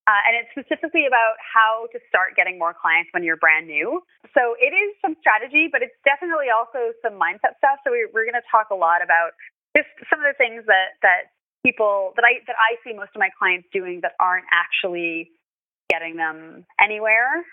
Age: 20-39